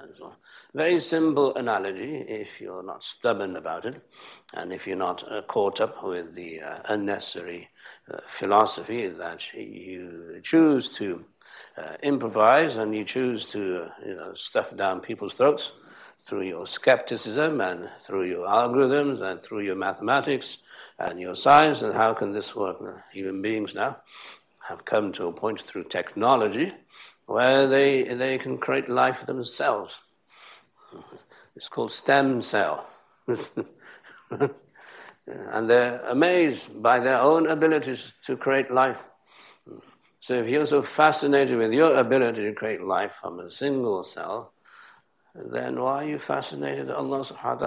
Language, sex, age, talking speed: English, male, 60-79, 140 wpm